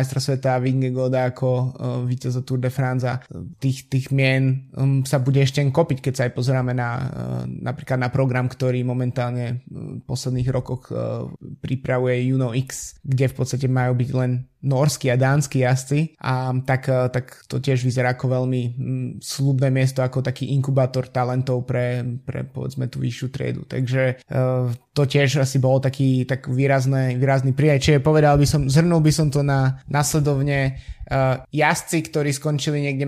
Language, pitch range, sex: Slovak, 130-145 Hz, male